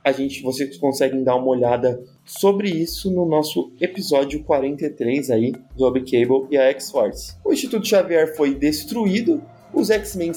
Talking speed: 150 wpm